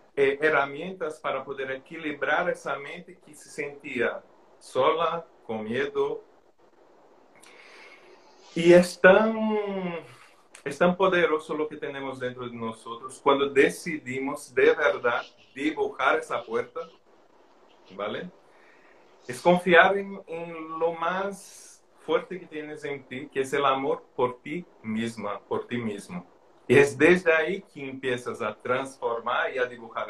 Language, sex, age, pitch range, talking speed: Spanish, male, 40-59, 140-215 Hz, 130 wpm